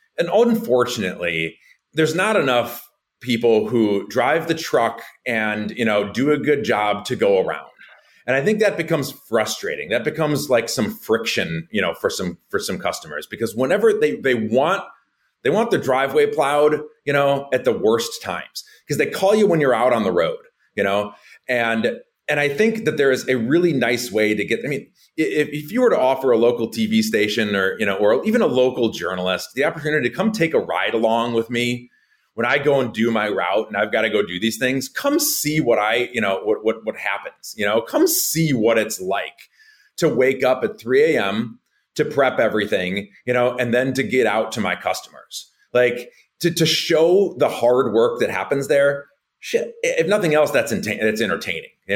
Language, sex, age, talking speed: English, male, 30-49, 205 wpm